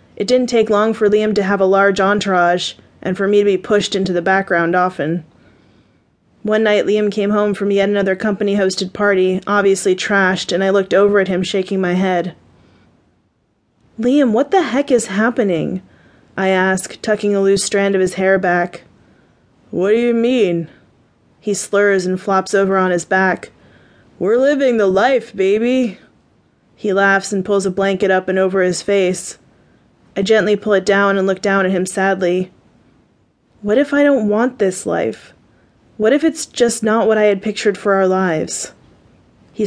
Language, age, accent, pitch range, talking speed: English, 20-39, American, 190-210 Hz, 175 wpm